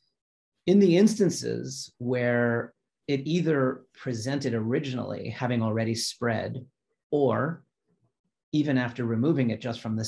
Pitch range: 110-130 Hz